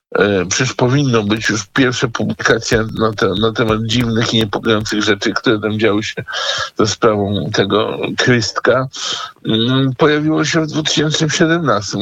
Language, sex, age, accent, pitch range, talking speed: Polish, male, 50-69, native, 95-115 Hz, 130 wpm